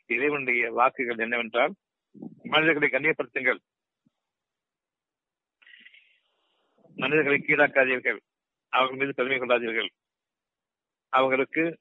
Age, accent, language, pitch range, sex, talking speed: 60-79, native, Tamil, 115-135 Hz, male, 55 wpm